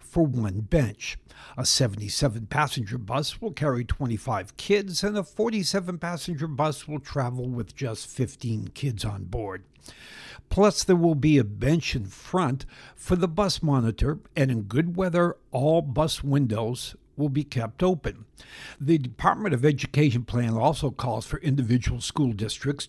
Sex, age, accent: male, 60-79, American